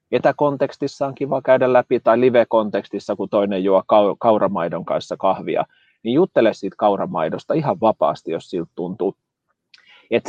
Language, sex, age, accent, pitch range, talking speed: Finnish, male, 30-49, native, 100-130 Hz, 145 wpm